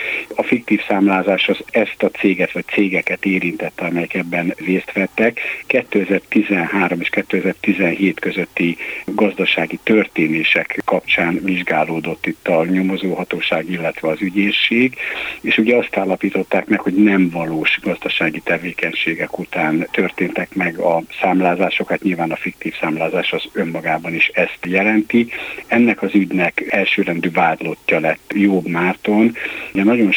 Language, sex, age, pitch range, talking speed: Hungarian, male, 60-79, 90-105 Hz, 125 wpm